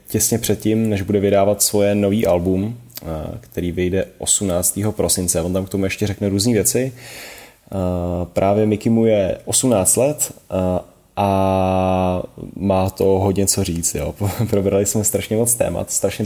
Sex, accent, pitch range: male, native, 95-105 Hz